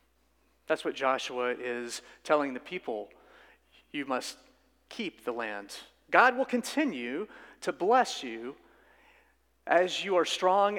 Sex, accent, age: male, American, 40-59